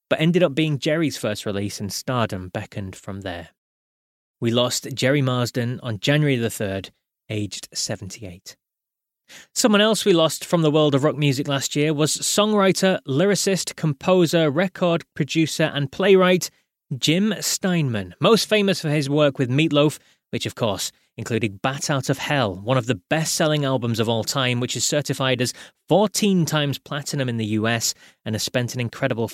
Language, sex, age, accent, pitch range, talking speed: English, male, 20-39, British, 115-160 Hz, 165 wpm